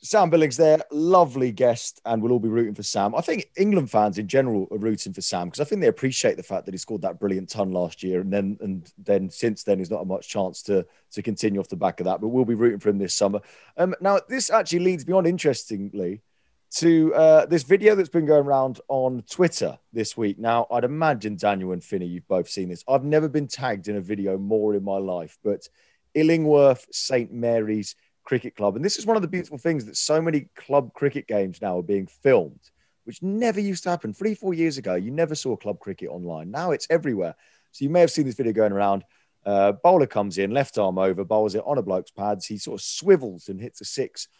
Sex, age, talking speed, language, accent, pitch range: male, 30-49, 240 wpm, English, British, 100-155 Hz